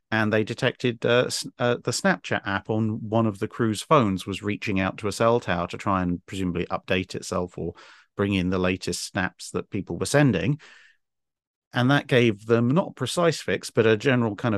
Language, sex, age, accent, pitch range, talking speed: English, male, 40-59, British, 95-120 Hz, 200 wpm